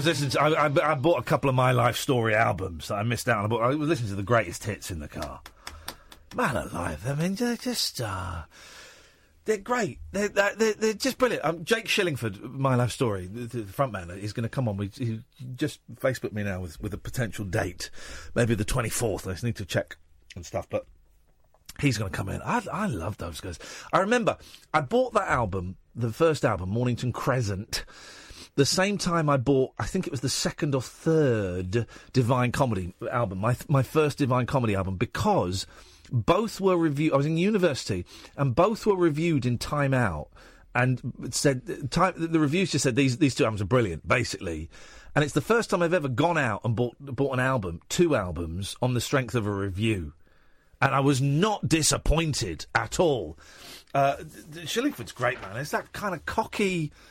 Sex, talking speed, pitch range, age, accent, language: male, 205 wpm, 105-155 Hz, 40-59, British, English